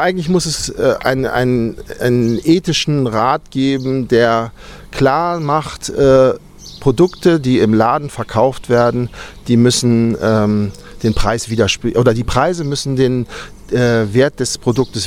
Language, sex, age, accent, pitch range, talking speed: German, male, 40-59, German, 115-135 Hz, 135 wpm